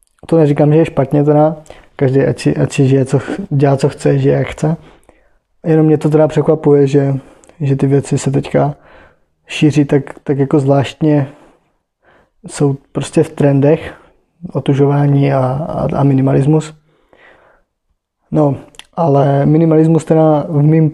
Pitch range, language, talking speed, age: 135-150 Hz, Czech, 145 wpm, 20-39